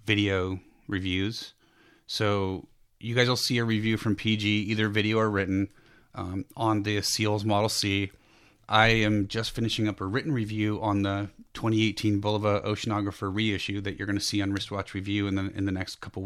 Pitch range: 100-110 Hz